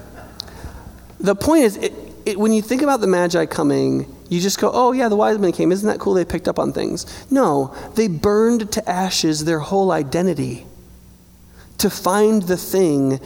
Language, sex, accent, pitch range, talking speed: English, male, American, 165-235 Hz, 175 wpm